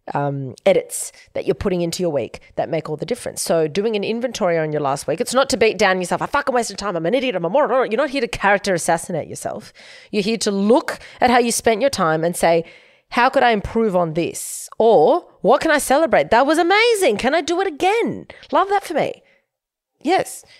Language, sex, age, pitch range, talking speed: English, female, 30-49, 160-230 Hz, 235 wpm